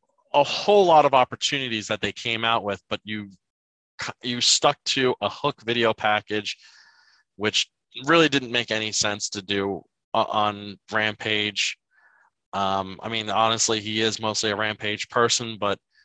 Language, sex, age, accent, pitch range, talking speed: English, male, 20-39, American, 100-120 Hz, 150 wpm